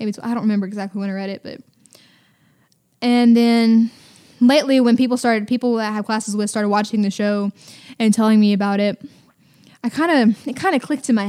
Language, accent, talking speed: English, American, 205 wpm